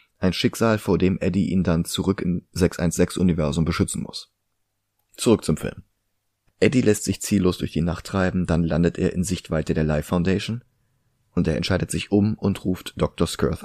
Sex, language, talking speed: male, German, 175 wpm